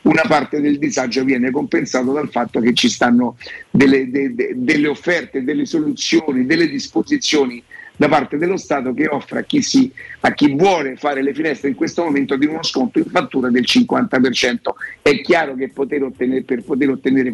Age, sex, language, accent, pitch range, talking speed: 50-69, male, Italian, native, 145-230 Hz, 165 wpm